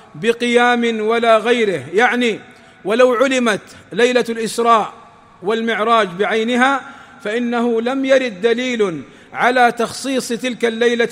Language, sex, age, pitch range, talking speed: Arabic, male, 40-59, 205-235 Hz, 95 wpm